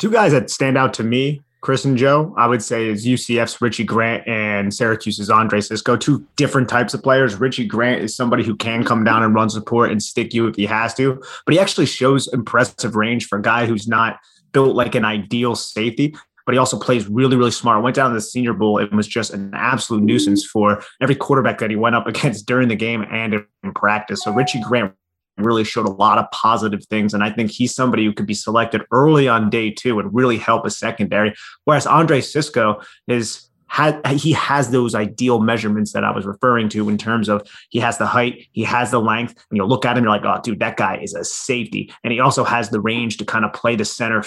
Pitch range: 110-125 Hz